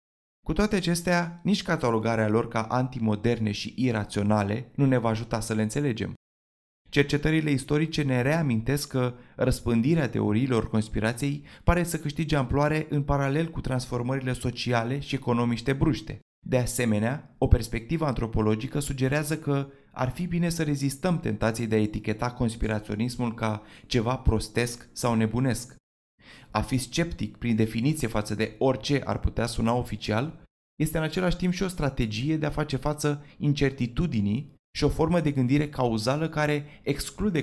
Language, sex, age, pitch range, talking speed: Romanian, male, 20-39, 115-145 Hz, 145 wpm